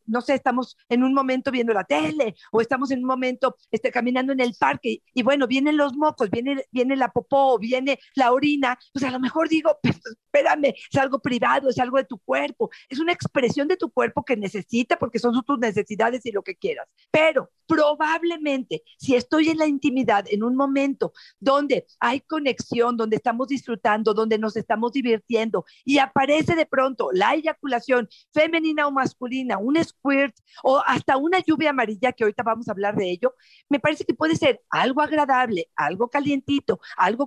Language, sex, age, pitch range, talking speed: Spanish, female, 50-69, 240-290 Hz, 190 wpm